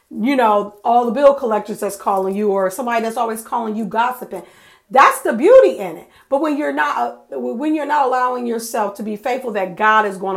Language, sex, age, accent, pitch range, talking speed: English, female, 40-59, American, 195-255 Hz, 215 wpm